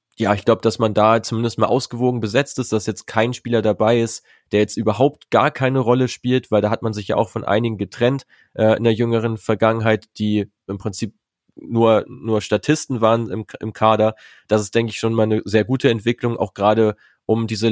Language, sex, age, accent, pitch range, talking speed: German, male, 20-39, German, 105-120 Hz, 215 wpm